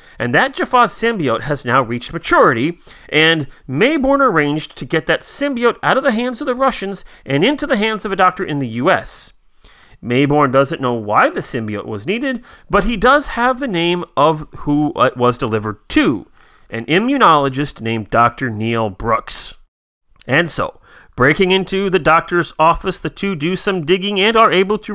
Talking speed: 180 wpm